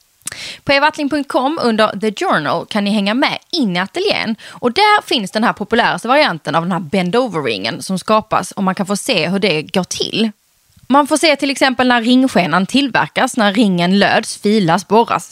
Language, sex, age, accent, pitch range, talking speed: Swedish, female, 20-39, native, 180-260 Hz, 190 wpm